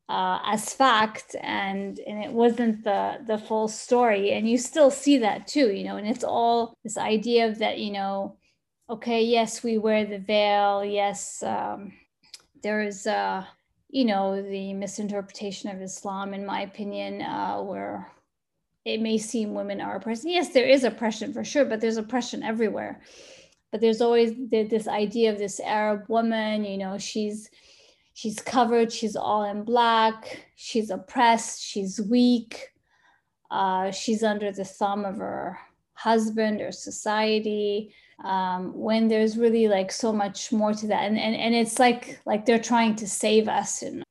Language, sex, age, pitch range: English, female, 30-49, 205-230 Hz